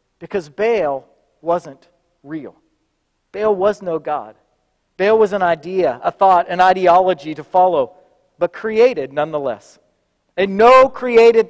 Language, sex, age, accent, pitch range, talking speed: English, male, 40-59, American, 210-295 Hz, 125 wpm